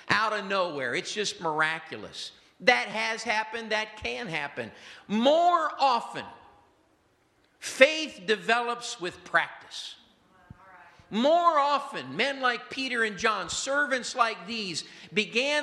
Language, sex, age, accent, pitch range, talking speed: English, male, 50-69, American, 195-245 Hz, 110 wpm